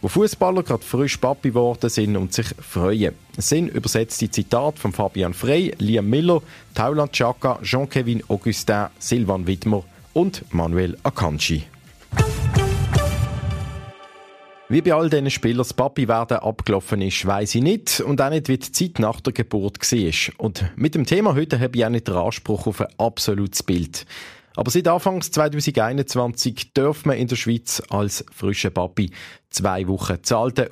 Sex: male